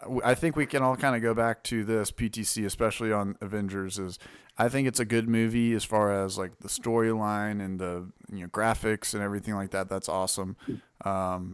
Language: English